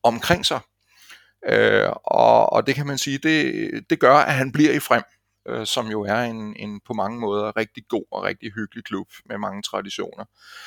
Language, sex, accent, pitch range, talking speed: Danish, male, native, 95-120 Hz, 195 wpm